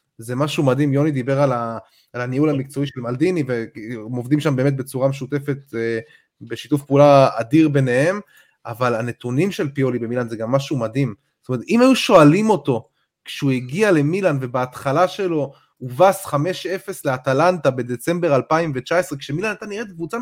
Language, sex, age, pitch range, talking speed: Hebrew, male, 20-39, 130-180 Hz, 145 wpm